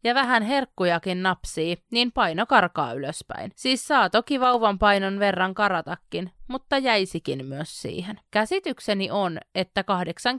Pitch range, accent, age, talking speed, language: 180-240 Hz, native, 30-49, 135 wpm, Finnish